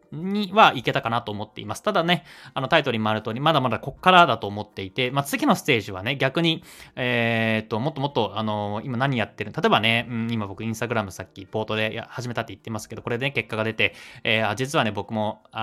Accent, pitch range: native, 105-130 Hz